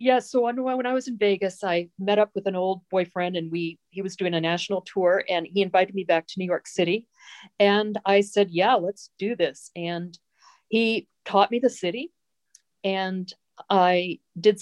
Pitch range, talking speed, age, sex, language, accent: 175-205 Hz, 195 wpm, 50-69, female, English, American